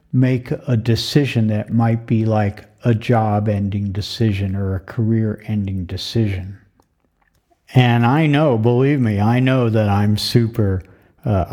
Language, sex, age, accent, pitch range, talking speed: English, male, 50-69, American, 100-120 Hz, 130 wpm